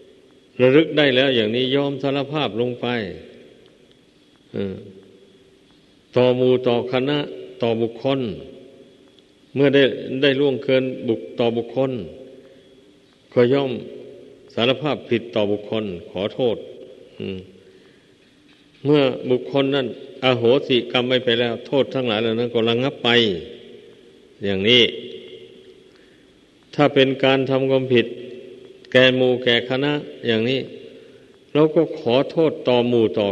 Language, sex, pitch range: Thai, male, 115-135 Hz